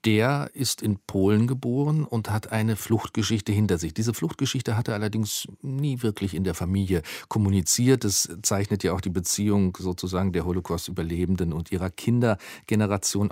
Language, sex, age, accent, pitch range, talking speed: German, male, 40-59, German, 100-125 Hz, 155 wpm